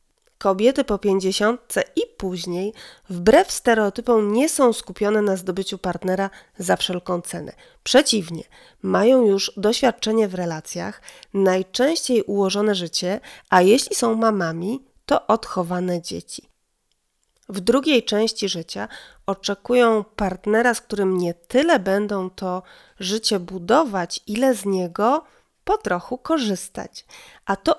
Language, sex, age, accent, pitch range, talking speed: Polish, female, 30-49, native, 180-225 Hz, 115 wpm